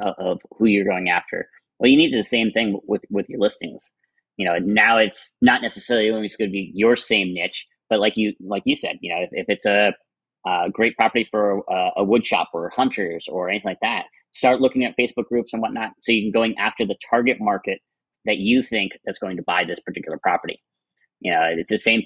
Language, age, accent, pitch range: English, 30-49, American, 100-115 Hz